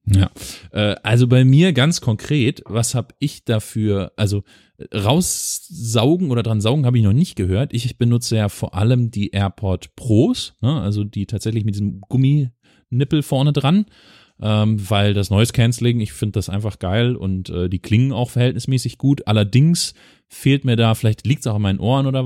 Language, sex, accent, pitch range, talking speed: German, male, German, 95-125 Hz, 170 wpm